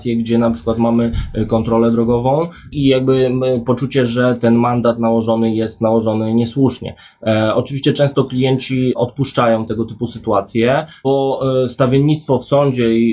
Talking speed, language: 125 wpm, Polish